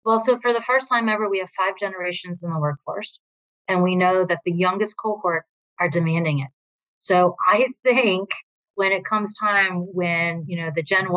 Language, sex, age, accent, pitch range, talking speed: English, female, 30-49, American, 170-200 Hz, 195 wpm